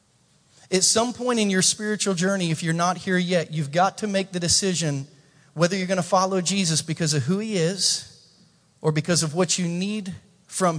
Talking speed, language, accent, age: 200 wpm, English, American, 40-59